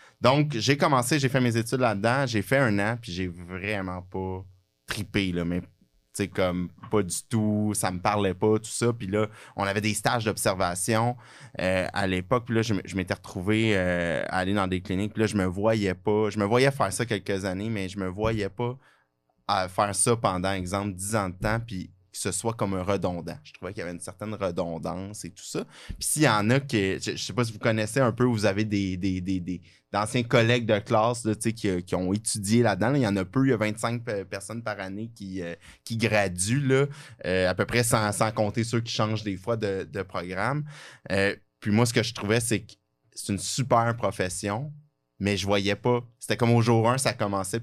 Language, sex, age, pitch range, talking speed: French, male, 20-39, 95-115 Hz, 235 wpm